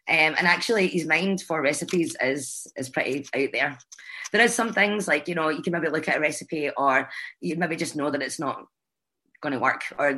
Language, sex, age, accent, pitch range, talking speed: English, female, 20-39, British, 145-175 Hz, 225 wpm